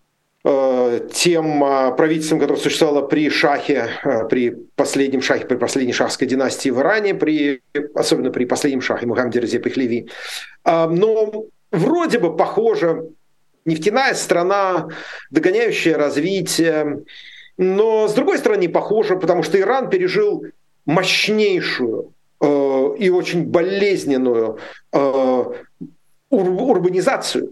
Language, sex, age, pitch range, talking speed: Russian, male, 40-59, 145-215 Hz, 95 wpm